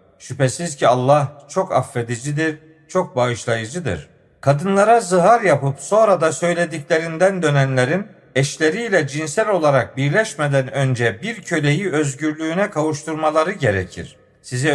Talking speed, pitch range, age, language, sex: 100 wpm, 135-180 Hz, 50-69, Turkish, male